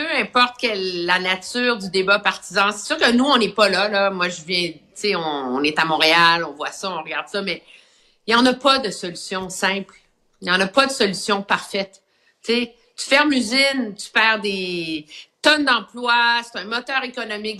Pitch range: 195-270 Hz